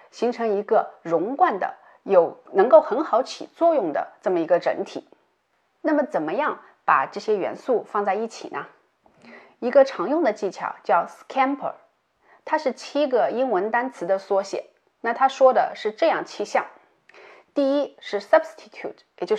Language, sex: Chinese, female